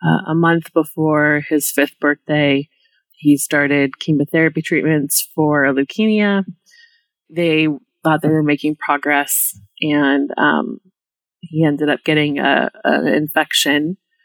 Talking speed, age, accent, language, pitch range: 120 wpm, 30-49, American, English, 145-170 Hz